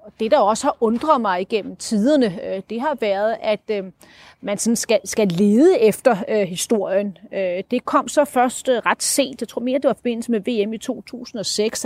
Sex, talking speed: female, 175 wpm